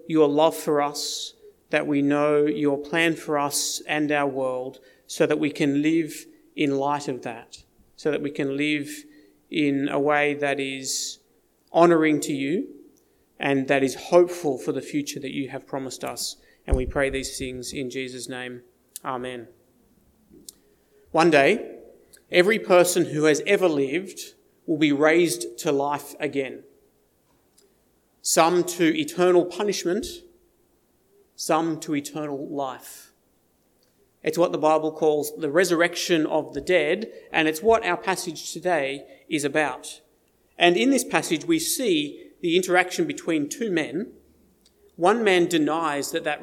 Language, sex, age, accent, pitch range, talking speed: English, male, 30-49, Australian, 145-185 Hz, 145 wpm